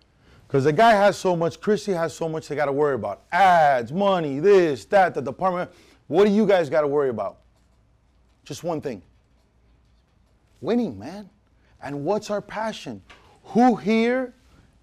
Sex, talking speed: male, 160 wpm